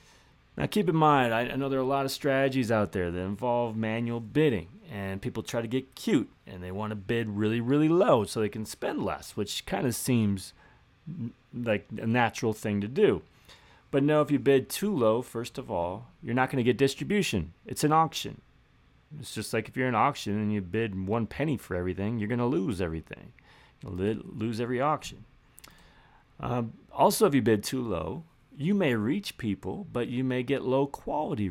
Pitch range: 105-140 Hz